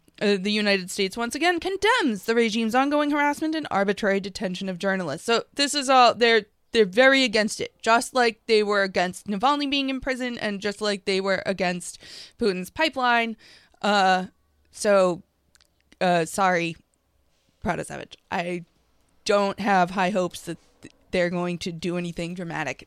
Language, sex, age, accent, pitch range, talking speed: English, female, 20-39, American, 180-225 Hz, 155 wpm